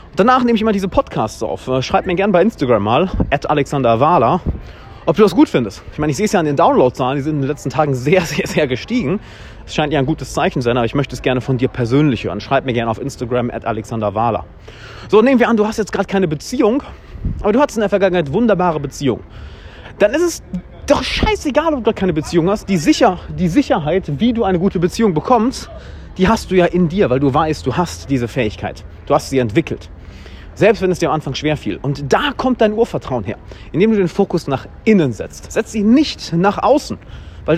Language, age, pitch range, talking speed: German, 30-49, 125-205 Hz, 225 wpm